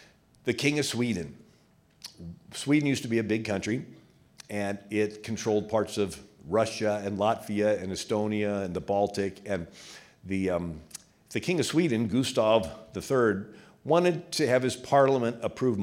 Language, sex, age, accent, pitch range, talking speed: English, male, 50-69, American, 105-160 Hz, 145 wpm